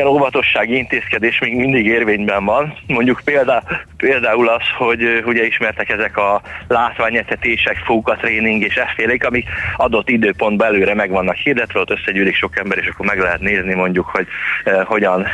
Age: 30-49